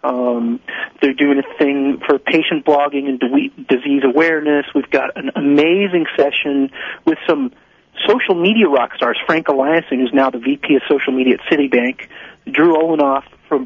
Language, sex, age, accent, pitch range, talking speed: English, male, 40-59, American, 130-155 Hz, 160 wpm